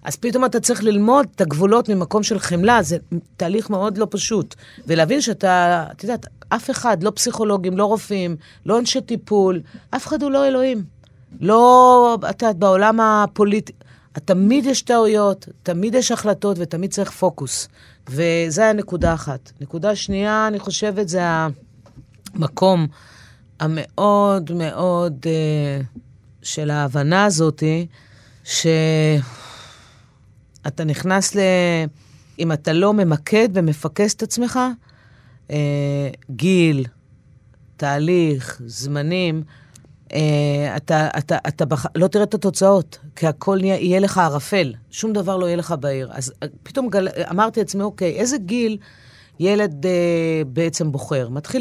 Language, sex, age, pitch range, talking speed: Hebrew, female, 30-49, 145-205 Hz, 125 wpm